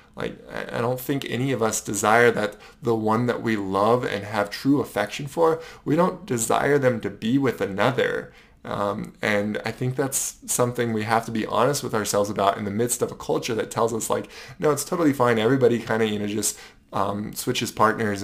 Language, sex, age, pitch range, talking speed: English, male, 20-39, 105-120 Hz, 210 wpm